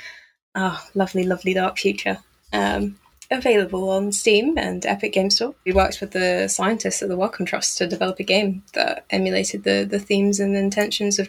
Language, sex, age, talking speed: English, female, 10-29, 180 wpm